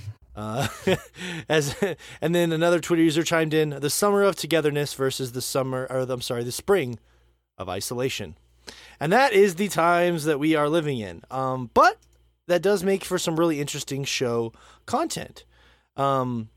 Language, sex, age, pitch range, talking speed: English, male, 30-49, 115-185 Hz, 165 wpm